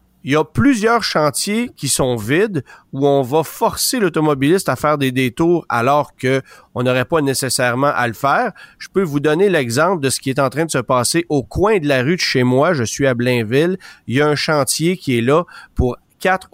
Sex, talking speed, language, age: male, 225 wpm, French, 40-59